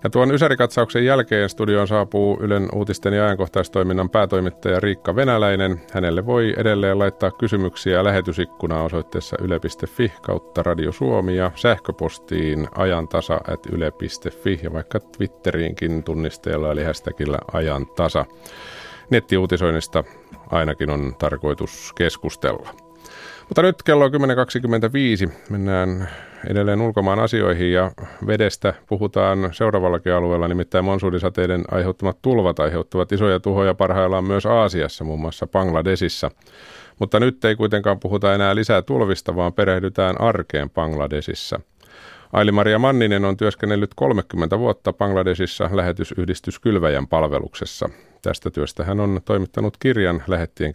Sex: male